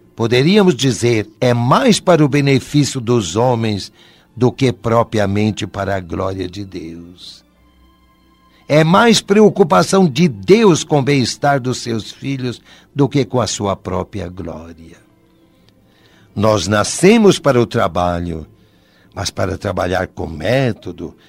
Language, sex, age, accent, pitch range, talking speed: Portuguese, male, 60-79, Brazilian, 100-155 Hz, 125 wpm